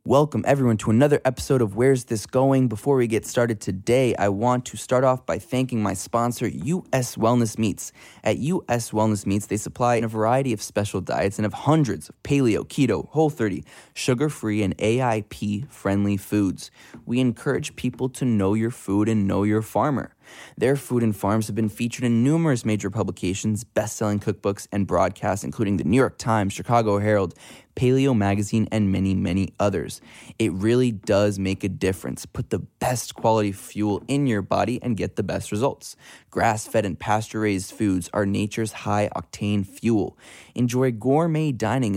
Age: 20-39